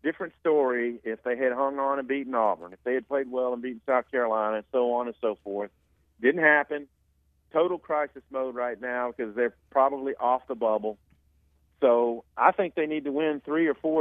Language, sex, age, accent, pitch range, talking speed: English, male, 40-59, American, 110-140 Hz, 205 wpm